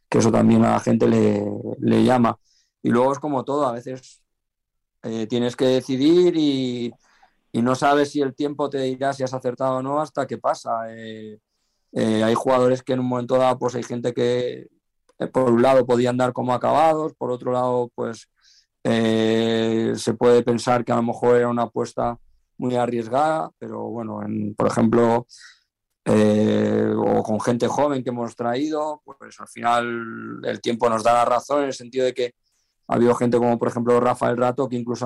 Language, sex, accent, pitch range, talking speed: Spanish, male, Spanish, 115-125 Hz, 190 wpm